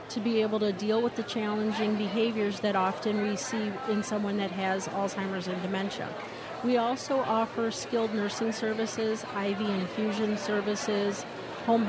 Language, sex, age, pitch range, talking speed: English, female, 40-59, 200-230 Hz, 150 wpm